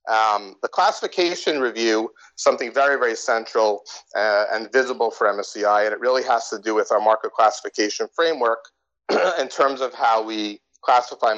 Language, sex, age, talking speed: English, male, 40-59, 160 wpm